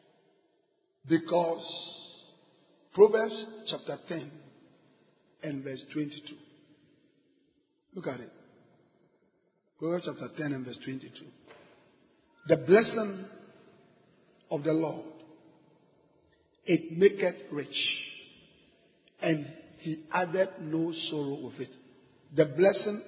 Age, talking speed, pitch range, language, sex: 50-69, 85 wpm, 155-200 Hz, English, male